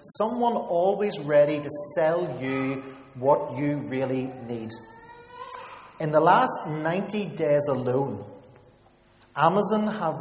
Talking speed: 105 wpm